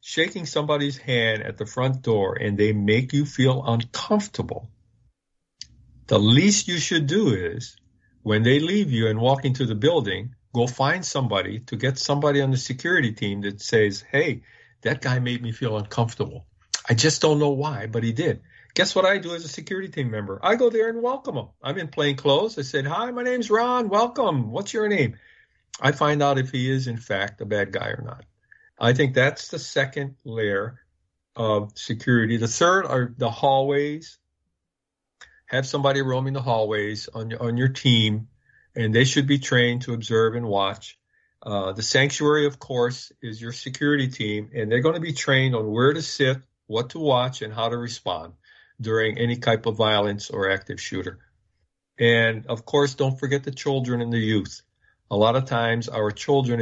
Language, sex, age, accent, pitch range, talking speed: English, male, 50-69, American, 110-140 Hz, 190 wpm